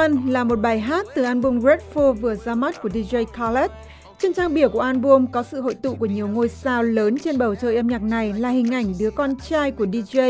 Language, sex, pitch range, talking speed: Vietnamese, female, 225-285 Hz, 245 wpm